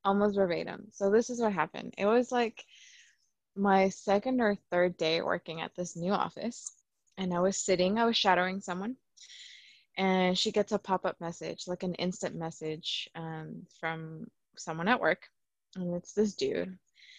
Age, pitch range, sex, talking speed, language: 20-39, 170-210 Hz, female, 165 wpm, English